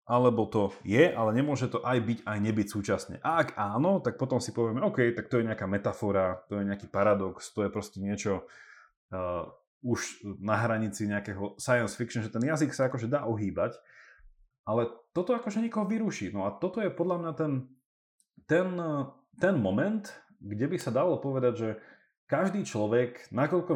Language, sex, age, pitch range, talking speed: Slovak, male, 30-49, 100-140 Hz, 175 wpm